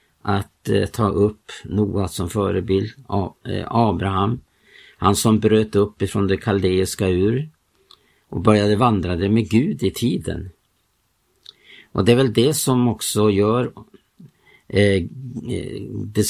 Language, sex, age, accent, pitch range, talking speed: Swedish, male, 50-69, Norwegian, 95-115 Hz, 120 wpm